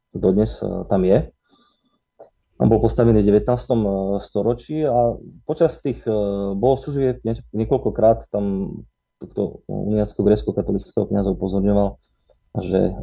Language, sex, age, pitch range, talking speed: Slovak, male, 30-49, 100-120 Hz, 90 wpm